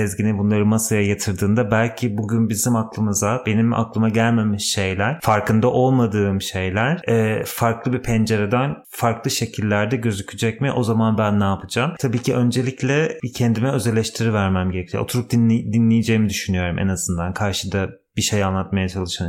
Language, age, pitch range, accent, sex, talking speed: Turkish, 30-49, 105-125 Hz, native, male, 140 wpm